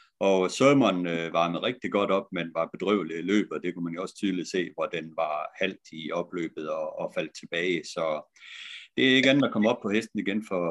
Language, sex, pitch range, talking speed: Danish, male, 85-105 Hz, 235 wpm